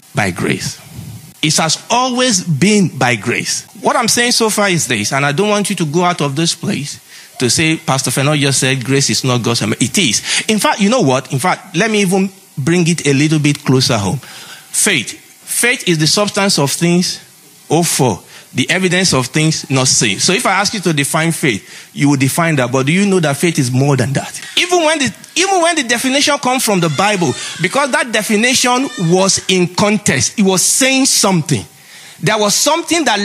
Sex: male